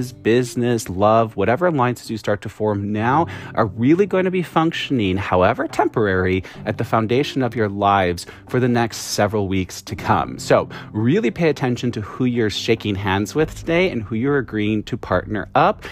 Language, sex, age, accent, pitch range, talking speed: English, male, 30-49, American, 105-155 Hz, 180 wpm